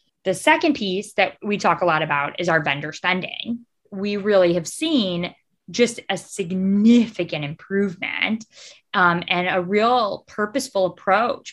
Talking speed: 140 wpm